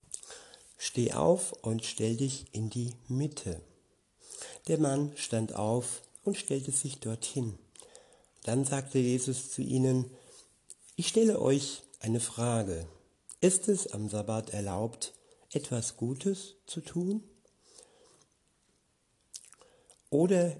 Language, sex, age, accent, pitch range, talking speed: German, male, 60-79, German, 115-140 Hz, 105 wpm